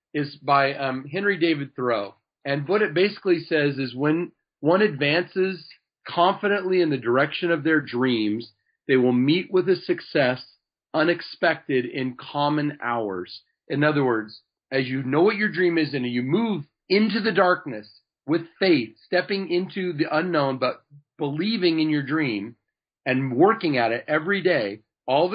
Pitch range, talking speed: 130-175 Hz, 160 wpm